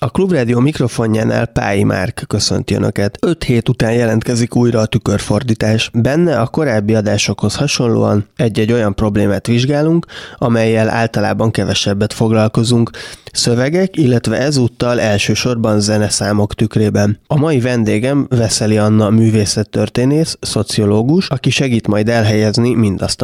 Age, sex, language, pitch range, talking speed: 20-39, male, Hungarian, 105-120 Hz, 115 wpm